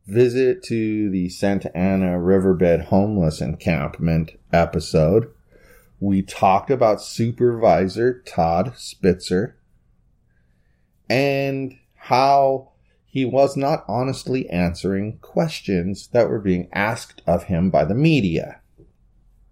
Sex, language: male, English